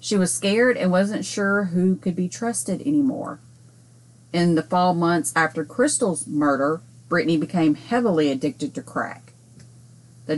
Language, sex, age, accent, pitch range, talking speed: English, female, 30-49, American, 140-180 Hz, 145 wpm